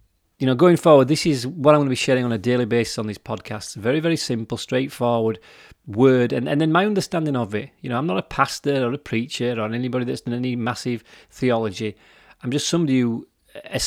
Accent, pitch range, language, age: British, 110-130 Hz, English, 30-49